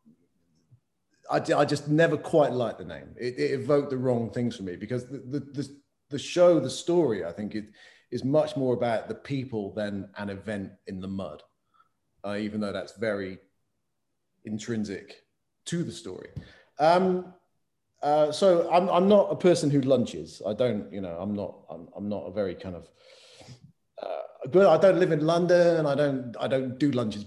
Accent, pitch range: British, 110-160 Hz